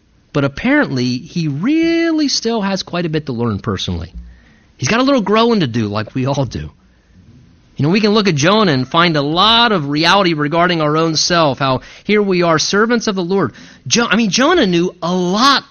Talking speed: 205 wpm